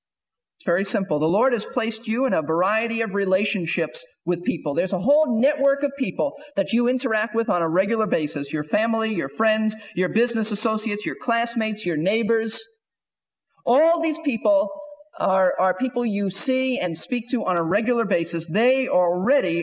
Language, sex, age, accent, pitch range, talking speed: English, male, 50-69, American, 185-265 Hz, 175 wpm